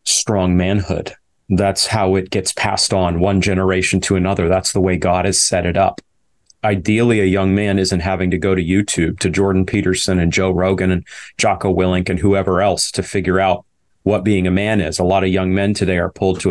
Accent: American